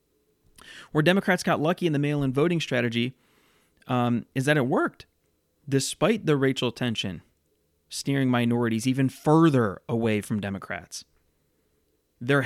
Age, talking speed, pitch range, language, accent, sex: 30-49, 125 wpm, 115-140 Hz, English, American, male